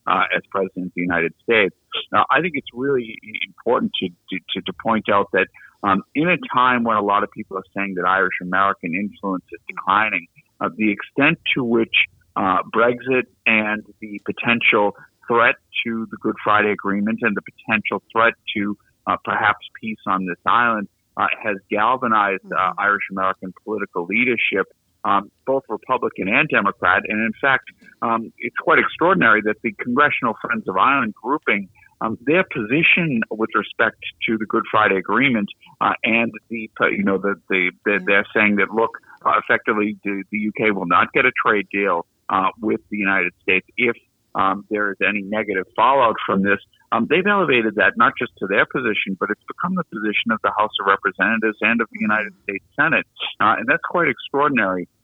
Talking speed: 180 wpm